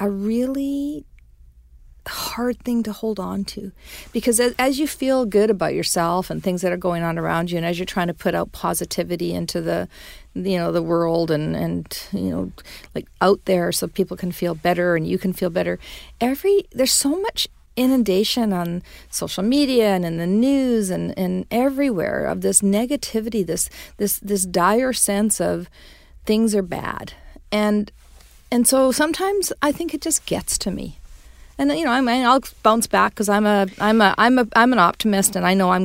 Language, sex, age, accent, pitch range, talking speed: English, female, 40-59, American, 175-235 Hz, 190 wpm